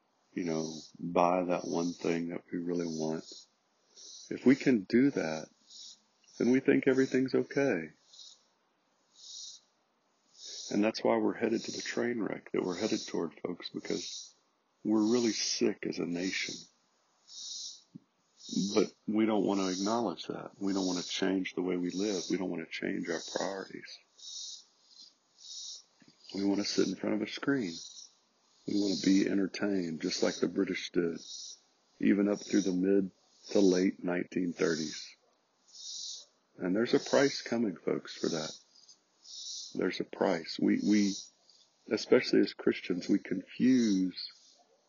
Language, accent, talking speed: English, American, 145 wpm